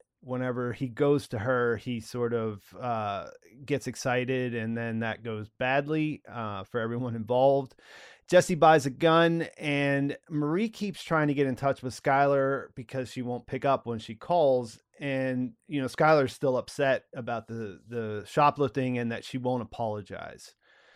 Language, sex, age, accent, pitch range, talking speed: English, male, 30-49, American, 120-150 Hz, 165 wpm